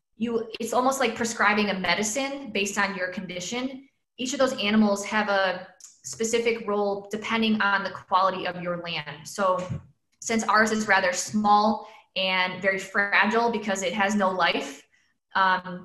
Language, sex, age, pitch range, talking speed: English, female, 20-39, 190-225 Hz, 155 wpm